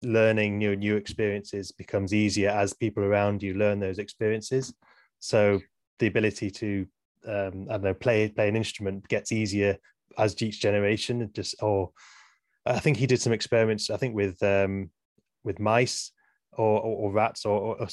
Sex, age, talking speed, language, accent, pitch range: male, 20-39, 165 wpm, English, British, 100-115 Hz